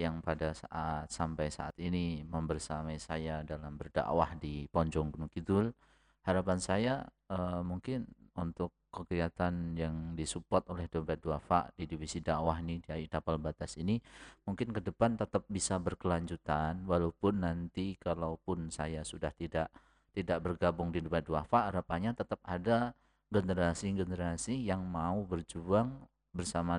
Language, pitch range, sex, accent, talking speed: Indonesian, 80-95 Hz, male, native, 130 wpm